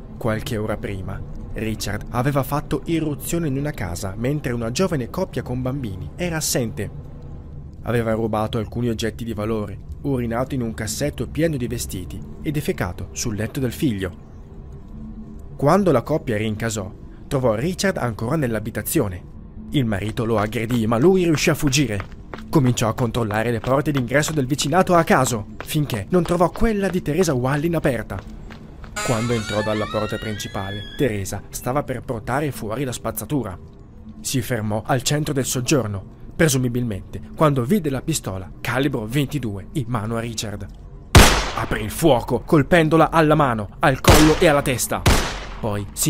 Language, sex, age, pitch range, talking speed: Italian, male, 20-39, 105-150 Hz, 150 wpm